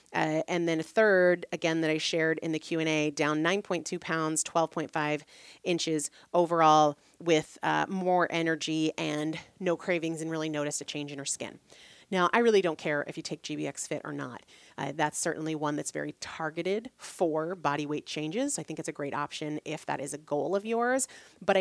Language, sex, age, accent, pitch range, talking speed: English, female, 30-49, American, 155-200 Hz, 195 wpm